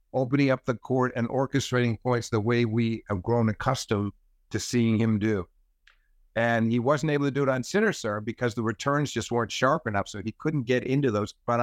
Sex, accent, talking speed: male, American, 210 wpm